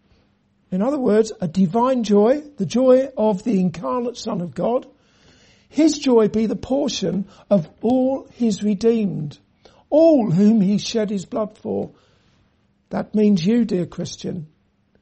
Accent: British